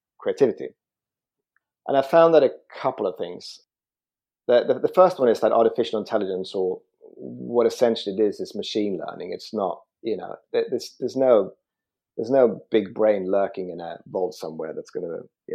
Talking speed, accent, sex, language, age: 180 wpm, British, male, English, 30-49